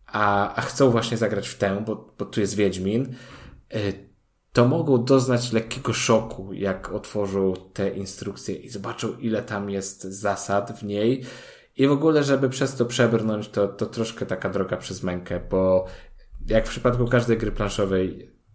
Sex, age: male, 20-39